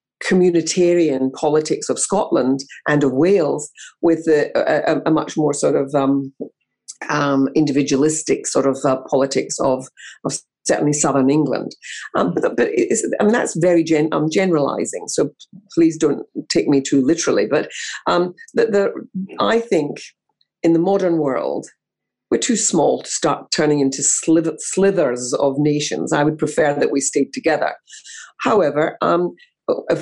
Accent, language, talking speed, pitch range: British, English, 150 wpm, 145-180 Hz